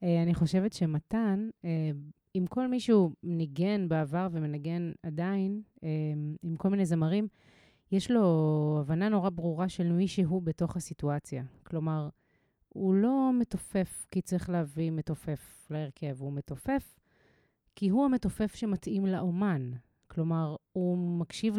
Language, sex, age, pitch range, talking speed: Hebrew, female, 30-49, 155-195 Hz, 115 wpm